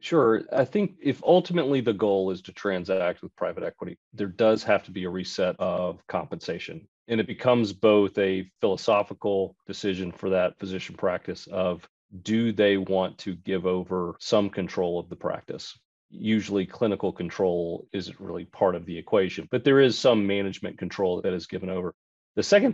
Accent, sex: American, male